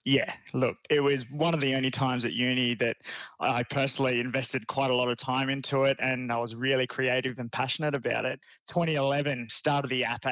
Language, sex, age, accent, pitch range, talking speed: English, male, 20-39, Australian, 120-140 Hz, 205 wpm